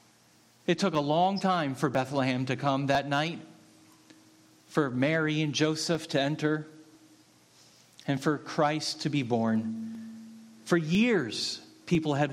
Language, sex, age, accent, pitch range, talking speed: English, male, 40-59, American, 130-170 Hz, 130 wpm